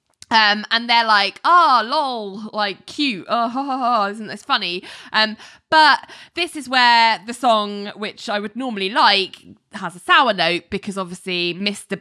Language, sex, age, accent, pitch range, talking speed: English, female, 20-39, British, 180-225 Hz, 155 wpm